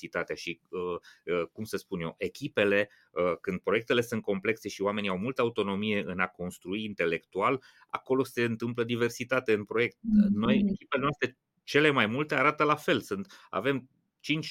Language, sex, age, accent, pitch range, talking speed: Romanian, male, 30-49, native, 105-140 Hz, 155 wpm